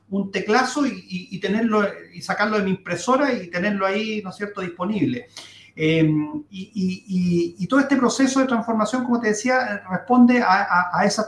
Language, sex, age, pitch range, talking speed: Spanish, male, 40-59, 175-230 Hz, 190 wpm